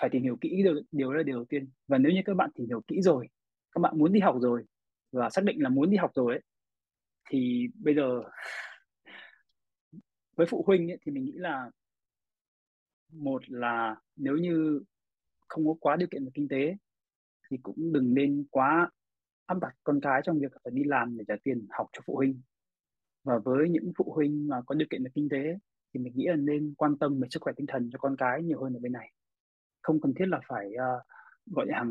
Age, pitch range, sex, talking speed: 20-39, 125-165 Hz, male, 225 wpm